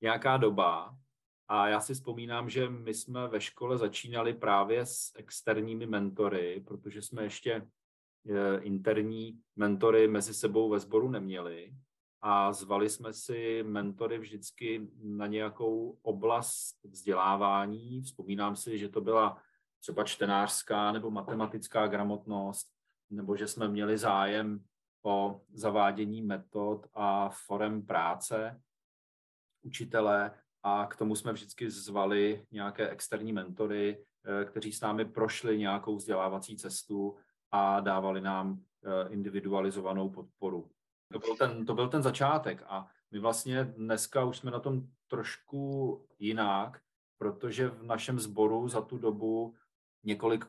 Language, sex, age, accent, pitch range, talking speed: Czech, male, 40-59, native, 100-110 Hz, 120 wpm